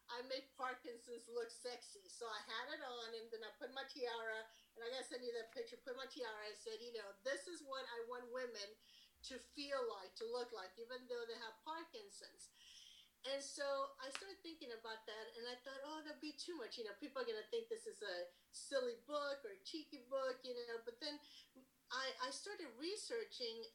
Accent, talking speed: American, 220 wpm